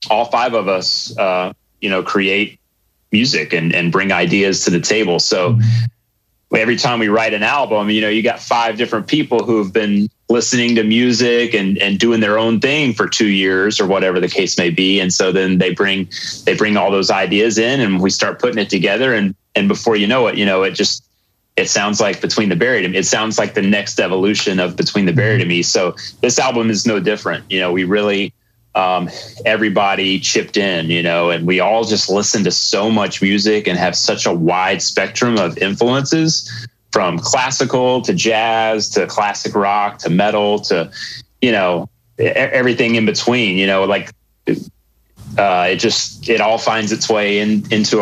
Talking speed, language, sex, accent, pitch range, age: 195 wpm, English, male, American, 95-115 Hz, 30-49